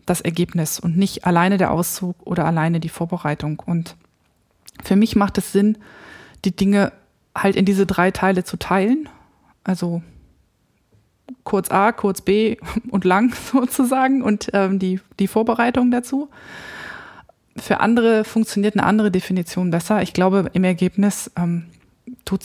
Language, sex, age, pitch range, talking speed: German, female, 20-39, 175-210 Hz, 140 wpm